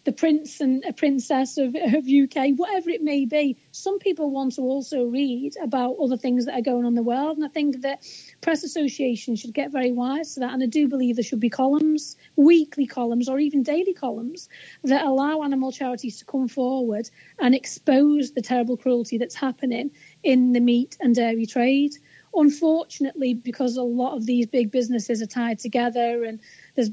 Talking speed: 195 wpm